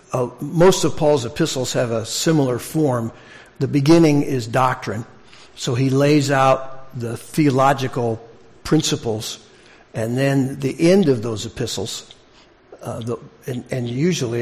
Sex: male